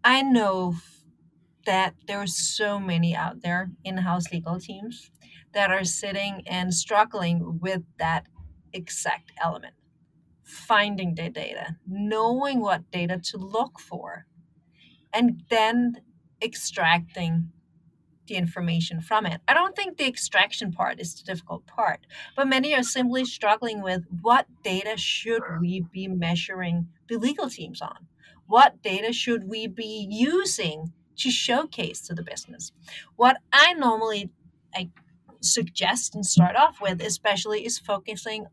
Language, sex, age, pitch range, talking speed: English, female, 30-49, 175-230 Hz, 130 wpm